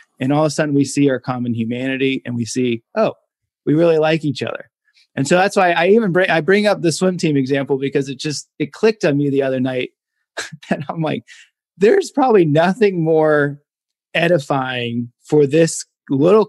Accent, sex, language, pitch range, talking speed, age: American, male, English, 130-165 Hz, 195 wpm, 30-49